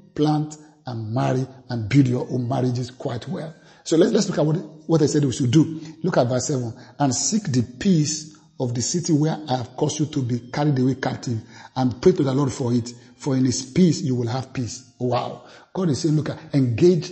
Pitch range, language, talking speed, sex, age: 125-155 Hz, English, 230 wpm, male, 50-69